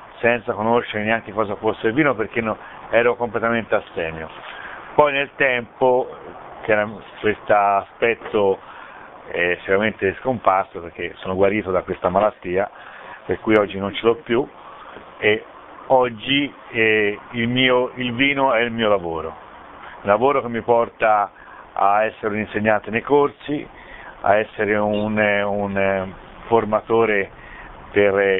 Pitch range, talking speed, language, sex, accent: 100-120 Hz, 135 wpm, Italian, male, native